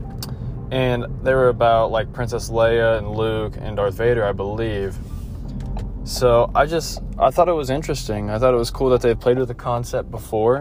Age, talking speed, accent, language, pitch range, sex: 20-39, 190 wpm, American, English, 80-120 Hz, male